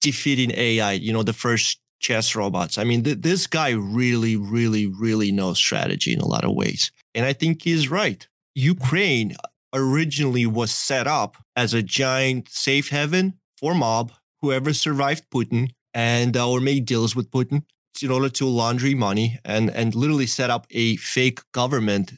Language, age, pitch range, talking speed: English, 30-49, 115-145 Hz, 170 wpm